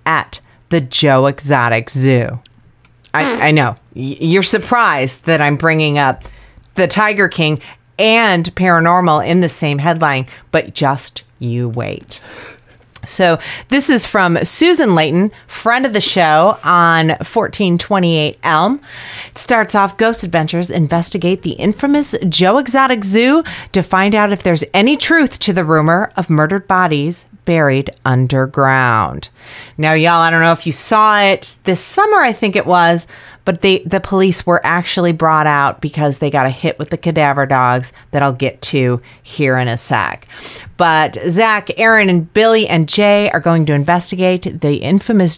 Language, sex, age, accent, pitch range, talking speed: English, female, 30-49, American, 145-200 Hz, 155 wpm